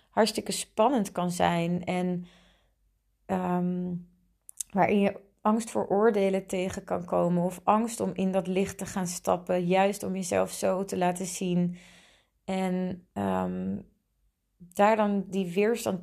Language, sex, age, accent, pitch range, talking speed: Dutch, female, 30-49, Dutch, 180-205 Hz, 135 wpm